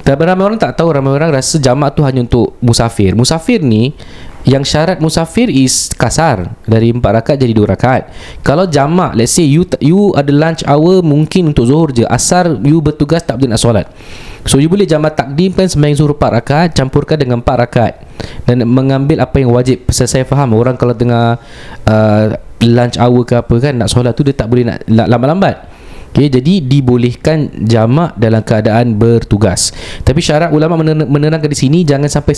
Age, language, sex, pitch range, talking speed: 20-39, Malay, male, 120-150 Hz, 185 wpm